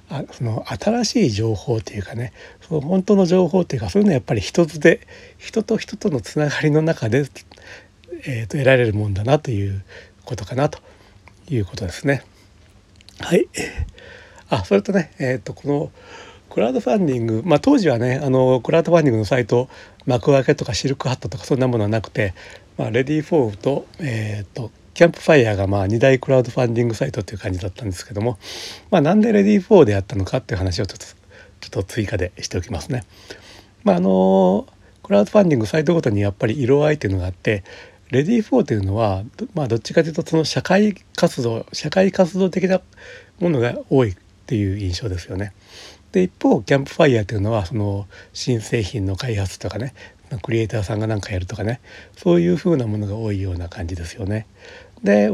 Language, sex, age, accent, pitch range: Japanese, male, 60-79, native, 100-155 Hz